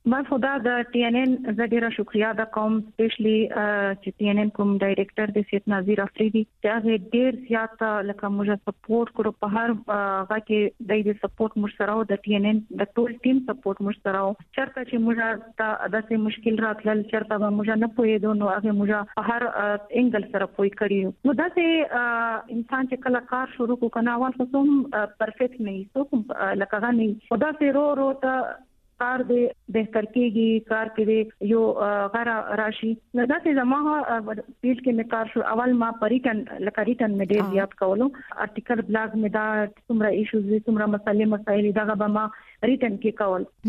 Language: Urdu